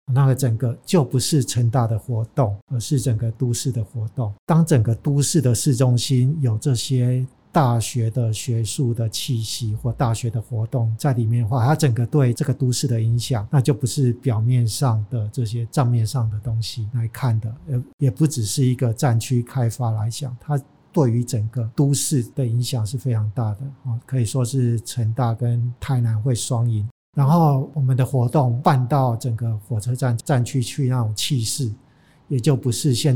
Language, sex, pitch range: Chinese, male, 115-135 Hz